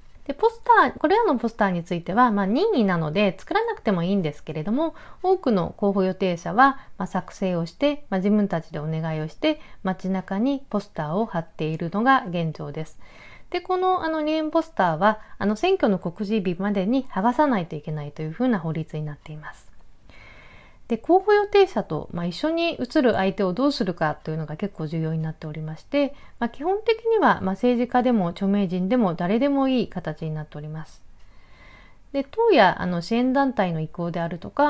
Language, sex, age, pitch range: Japanese, female, 40-59, 170-260 Hz